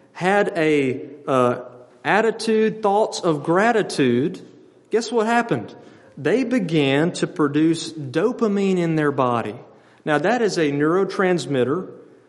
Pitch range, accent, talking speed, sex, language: 140-190 Hz, American, 110 wpm, male, English